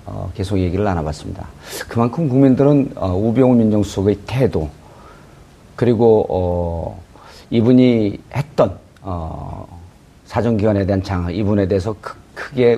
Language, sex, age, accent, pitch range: Korean, male, 40-59, native, 95-120 Hz